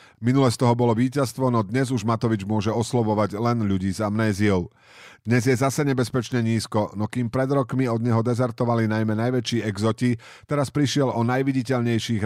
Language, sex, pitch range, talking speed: Slovak, male, 105-130 Hz, 165 wpm